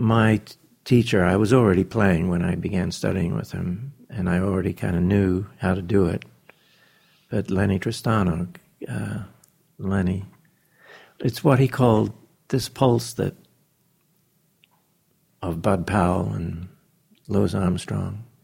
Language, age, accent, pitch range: English, 60-79, American, 100-150 Hz